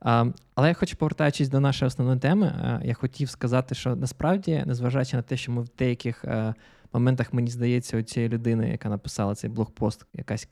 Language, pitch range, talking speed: Ukrainian, 120-165 Hz, 175 wpm